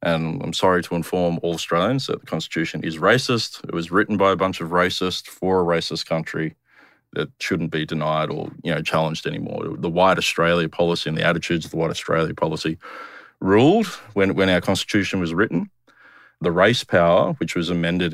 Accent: Australian